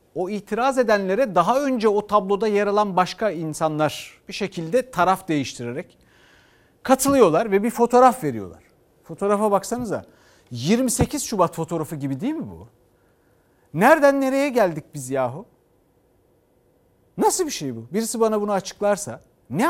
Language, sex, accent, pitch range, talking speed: Turkish, male, native, 145-225 Hz, 130 wpm